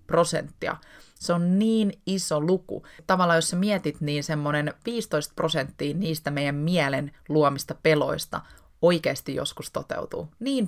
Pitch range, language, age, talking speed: 145-165 Hz, Finnish, 20-39, 130 wpm